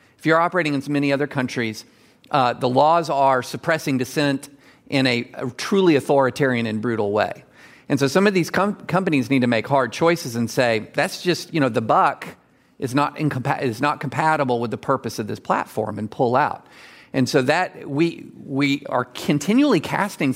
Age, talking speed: 50-69, 190 wpm